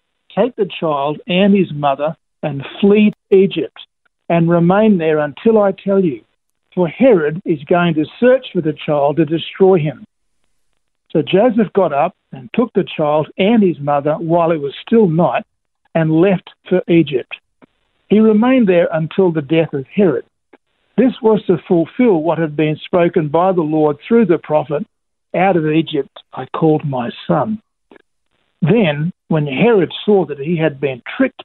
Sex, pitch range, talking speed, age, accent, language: male, 150-195 Hz, 165 wpm, 60-79, Australian, English